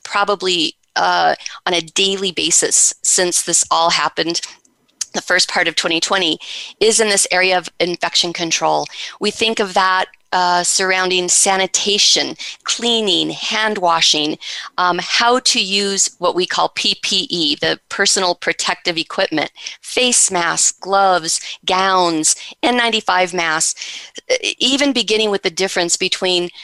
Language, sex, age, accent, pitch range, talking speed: English, female, 40-59, American, 175-215 Hz, 125 wpm